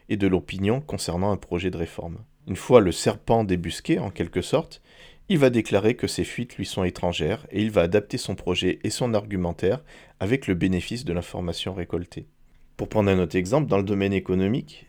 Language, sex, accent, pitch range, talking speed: French, male, French, 90-115 Hz, 200 wpm